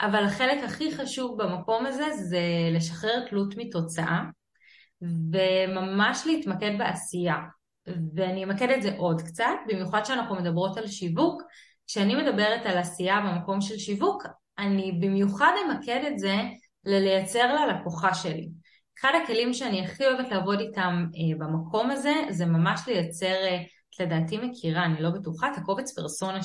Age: 20-39